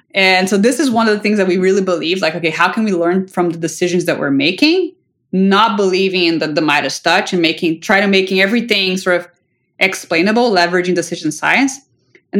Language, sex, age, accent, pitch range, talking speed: English, female, 30-49, American, 180-235 Hz, 215 wpm